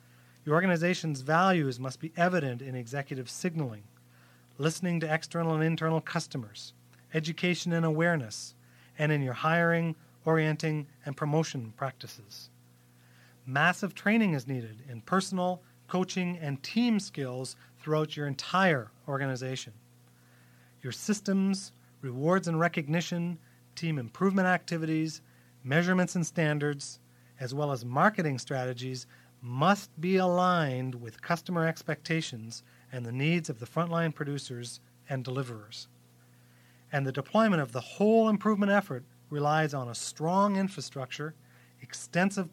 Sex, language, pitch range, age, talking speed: male, English, 120-170 Hz, 40-59, 120 wpm